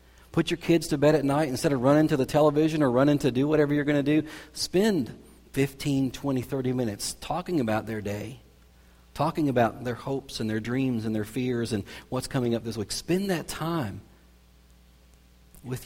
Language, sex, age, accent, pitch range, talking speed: English, male, 40-59, American, 105-155 Hz, 195 wpm